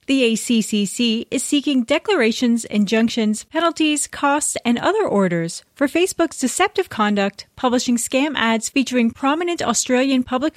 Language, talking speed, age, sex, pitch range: English, 125 wpm, 30-49, female, 200-275 Hz